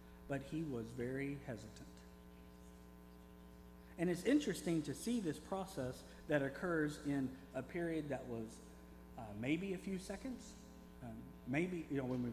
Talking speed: 145 wpm